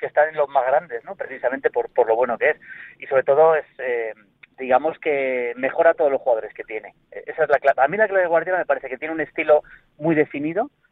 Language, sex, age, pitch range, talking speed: Spanish, male, 30-49, 130-180 Hz, 255 wpm